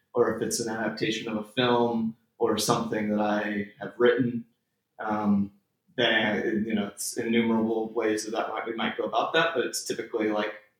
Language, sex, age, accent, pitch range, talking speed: English, male, 20-39, American, 105-115 Hz, 190 wpm